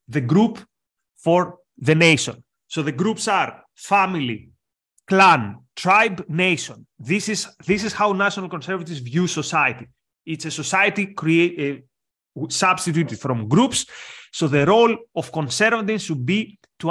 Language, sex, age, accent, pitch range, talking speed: English, male, 30-49, Spanish, 145-195 Hz, 130 wpm